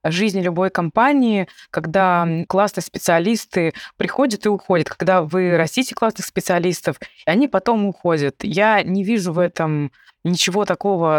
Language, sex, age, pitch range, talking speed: Russian, female, 20-39, 155-190 Hz, 130 wpm